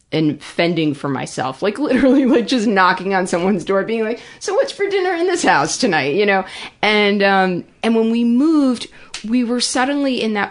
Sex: female